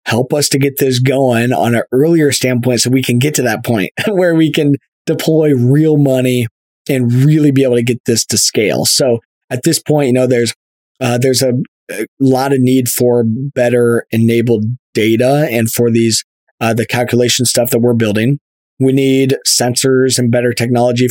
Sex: male